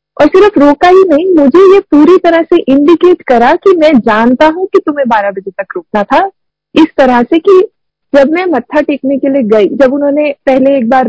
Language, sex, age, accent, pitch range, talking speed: Hindi, female, 50-69, native, 235-315 Hz, 215 wpm